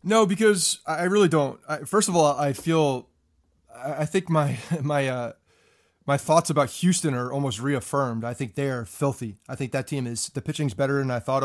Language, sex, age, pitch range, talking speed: English, male, 30-49, 125-155 Hz, 210 wpm